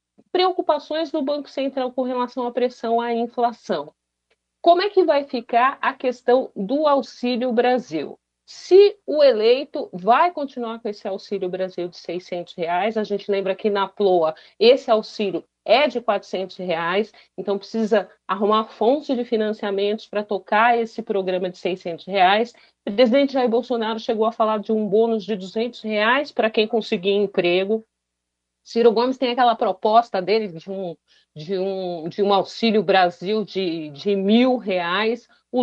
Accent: Brazilian